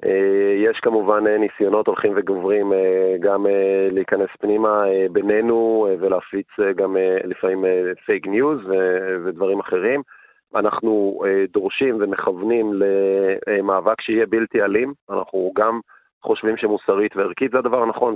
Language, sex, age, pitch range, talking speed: Hebrew, male, 30-49, 95-150 Hz, 100 wpm